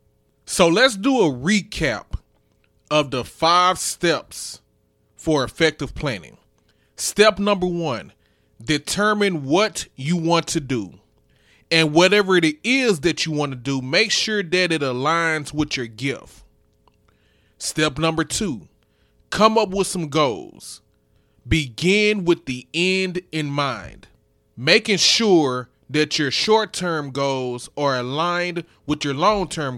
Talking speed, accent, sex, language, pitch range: 125 wpm, American, male, English, 140-195 Hz